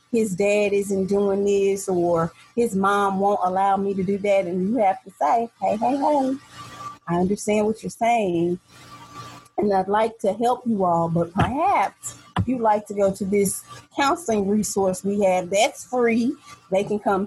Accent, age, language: American, 30-49, English